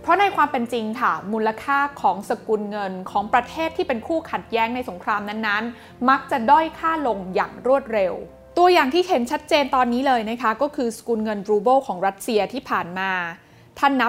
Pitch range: 215-280 Hz